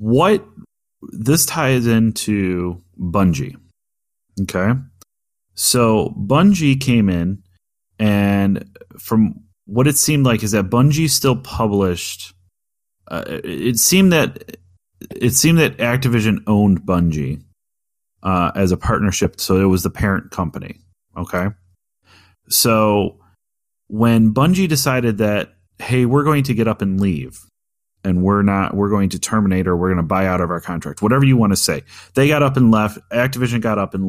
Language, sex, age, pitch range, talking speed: English, male, 30-49, 95-130 Hz, 150 wpm